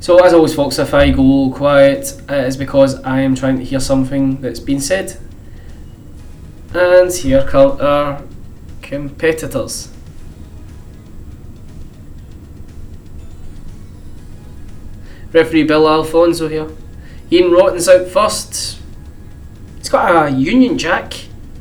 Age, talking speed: 10-29, 105 wpm